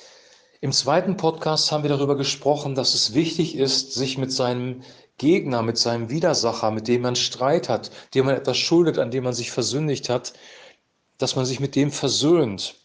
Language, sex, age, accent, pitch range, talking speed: German, male, 40-59, German, 125-150 Hz, 180 wpm